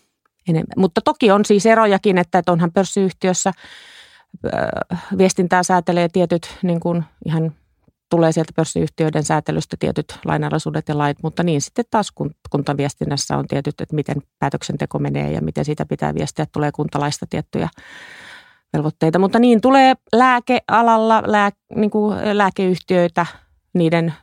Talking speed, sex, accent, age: 130 wpm, female, native, 30-49